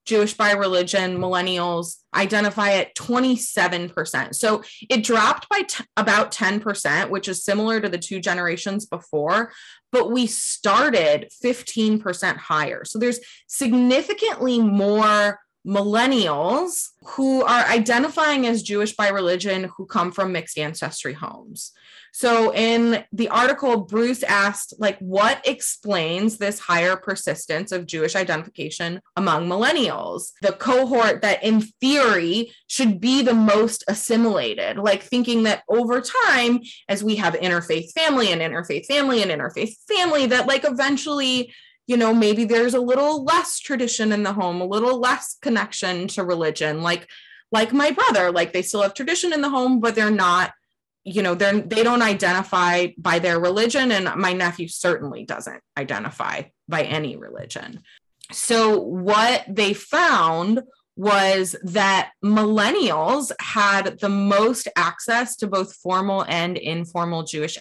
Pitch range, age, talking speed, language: 185-240 Hz, 20-39, 140 wpm, English